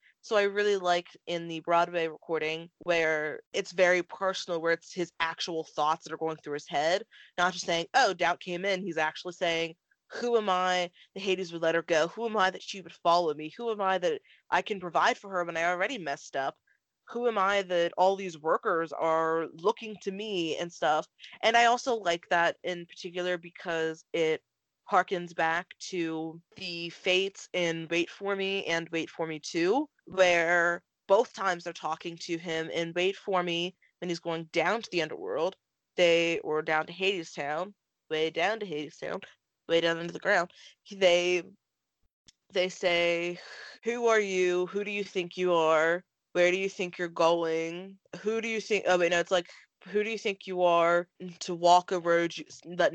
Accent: American